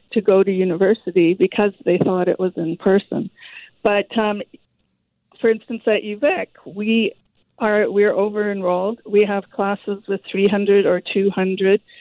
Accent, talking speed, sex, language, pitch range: American, 145 wpm, female, English, 195-225 Hz